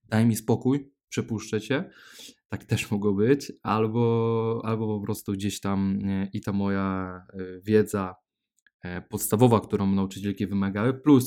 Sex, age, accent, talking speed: male, 20-39, native, 130 wpm